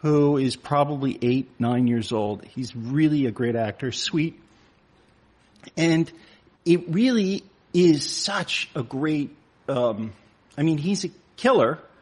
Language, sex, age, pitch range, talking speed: English, male, 40-59, 125-165 Hz, 130 wpm